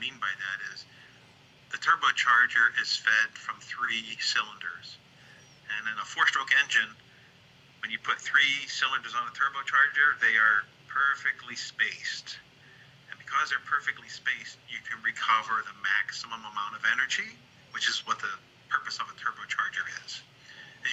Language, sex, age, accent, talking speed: English, male, 50-69, American, 150 wpm